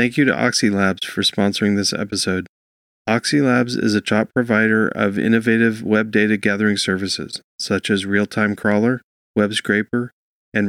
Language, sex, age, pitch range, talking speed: English, male, 40-59, 100-120 Hz, 150 wpm